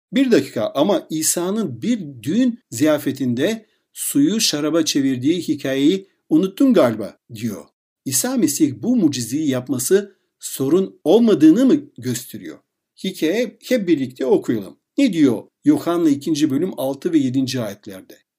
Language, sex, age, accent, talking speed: Turkish, male, 60-79, native, 120 wpm